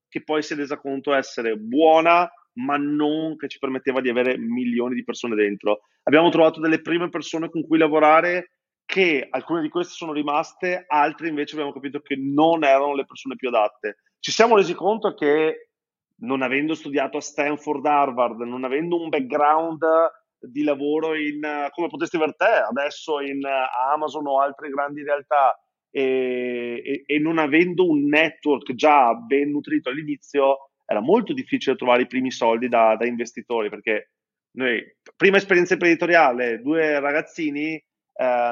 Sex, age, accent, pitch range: male, 30-49, native, 135-165 Hz